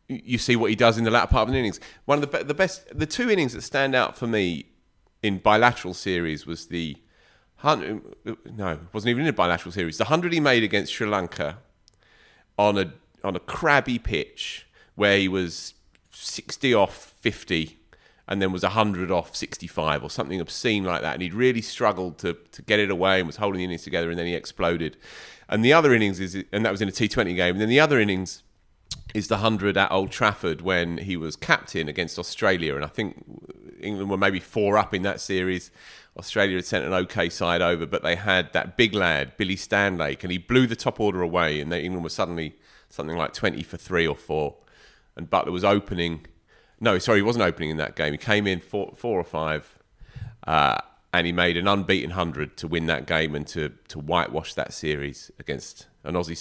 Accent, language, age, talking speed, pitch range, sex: British, English, 30-49, 215 wpm, 85-105 Hz, male